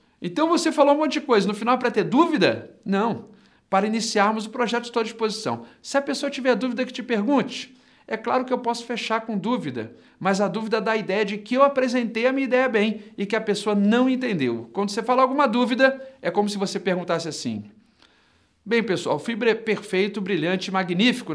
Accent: Brazilian